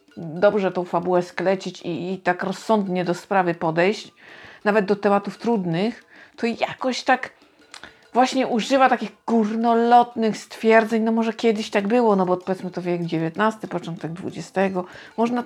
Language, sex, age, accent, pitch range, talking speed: Polish, female, 50-69, native, 200-250 Hz, 145 wpm